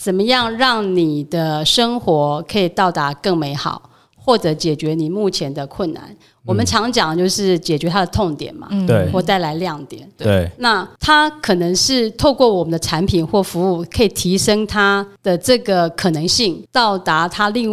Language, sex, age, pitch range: Chinese, female, 30-49, 165-225 Hz